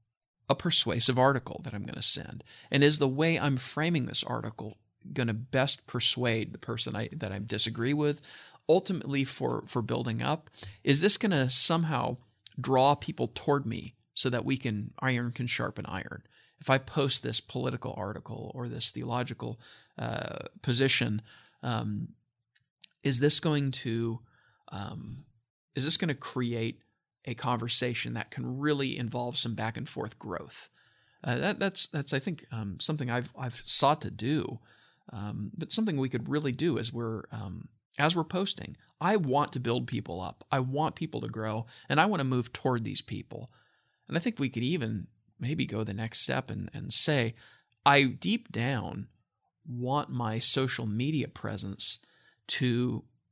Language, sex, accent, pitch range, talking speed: English, male, American, 115-145 Hz, 170 wpm